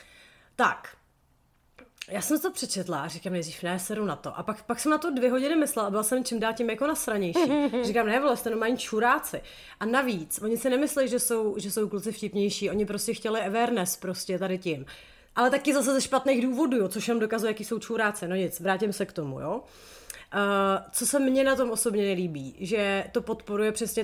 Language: Czech